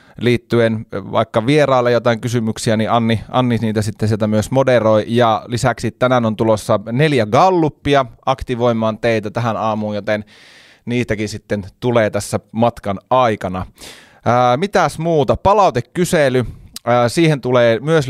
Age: 30-49